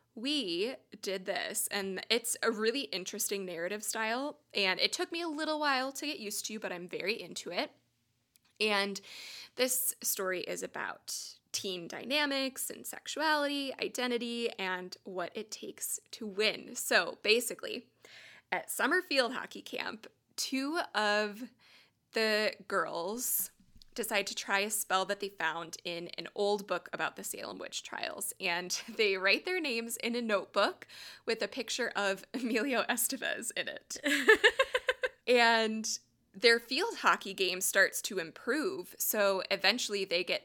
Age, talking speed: 20-39, 145 wpm